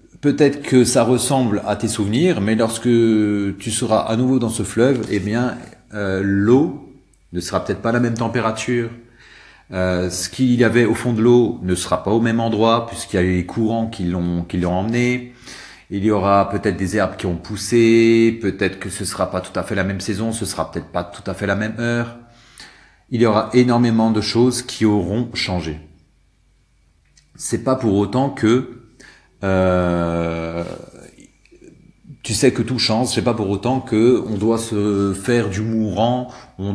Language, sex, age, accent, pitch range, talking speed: French, male, 40-59, French, 95-120 Hz, 190 wpm